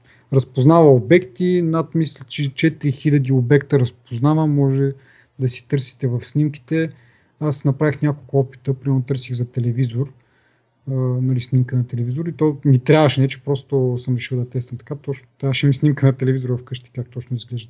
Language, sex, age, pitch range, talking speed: Bulgarian, male, 30-49, 125-155 Hz, 170 wpm